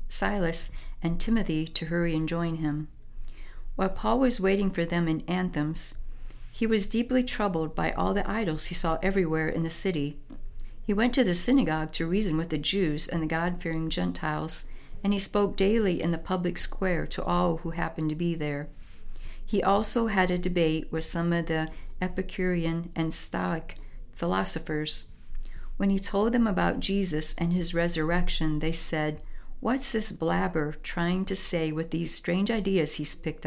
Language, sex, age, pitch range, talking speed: English, female, 50-69, 160-195 Hz, 170 wpm